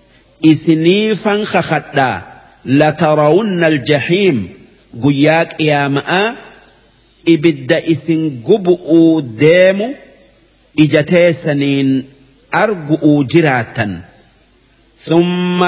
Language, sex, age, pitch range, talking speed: English, male, 50-69, 145-180 Hz, 65 wpm